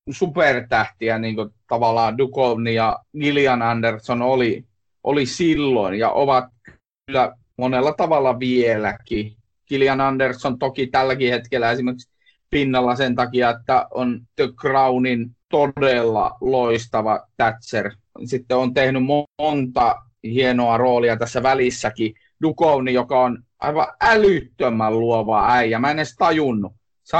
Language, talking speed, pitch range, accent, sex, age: Finnish, 120 wpm, 115-145 Hz, native, male, 30-49